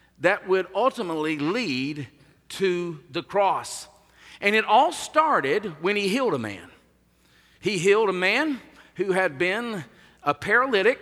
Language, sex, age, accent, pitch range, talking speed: English, male, 50-69, American, 150-235 Hz, 135 wpm